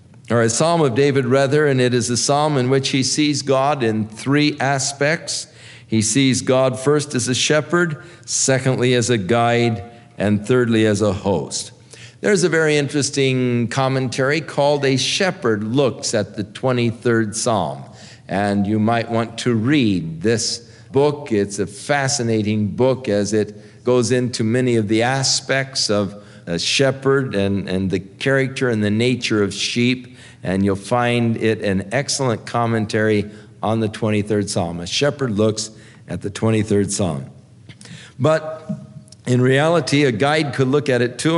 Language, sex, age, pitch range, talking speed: English, male, 50-69, 105-135 Hz, 155 wpm